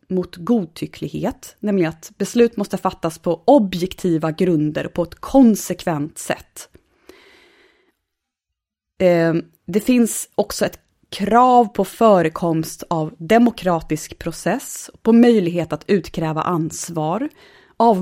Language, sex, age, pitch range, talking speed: Swedish, female, 20-39, 170-235 Hz, 100 wpm